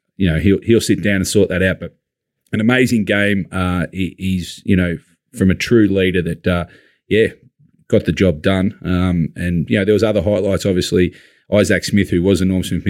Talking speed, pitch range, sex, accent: 215 wpm, 85-100 Hz, male, Australian